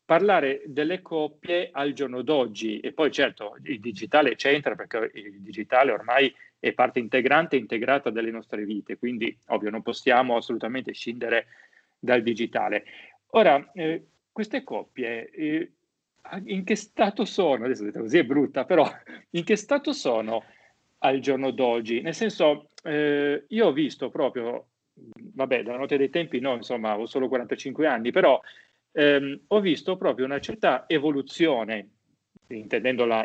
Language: Italian